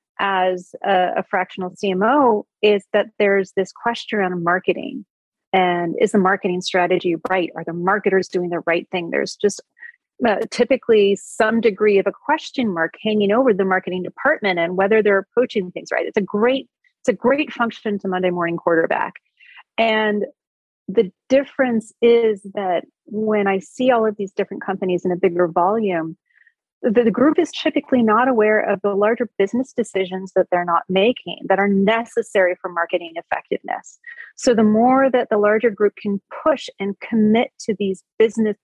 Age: 30-49